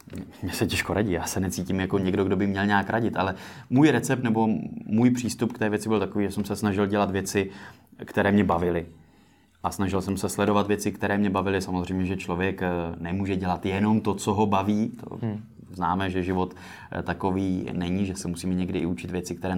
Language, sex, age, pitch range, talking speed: Czech, male, 20-39, 95-110 Hz, 205 wpm